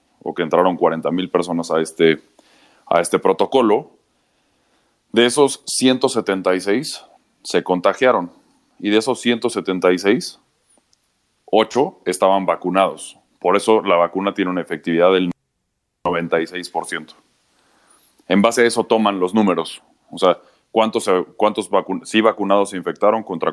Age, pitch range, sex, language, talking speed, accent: 30-49, 95-110 Hz, male, Spanish, 115 wpm, Mexican